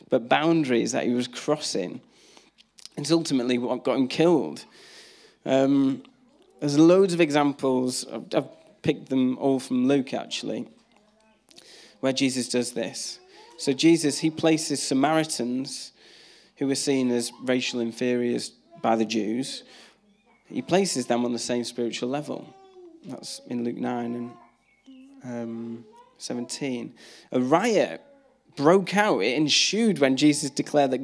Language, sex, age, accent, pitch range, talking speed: English, male, 20-39, British, 130-200 Hz, 130 wpm